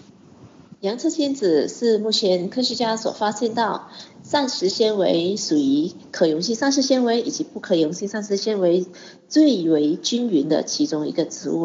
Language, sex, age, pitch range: Chinese, female, 30-49, 180-255 Hz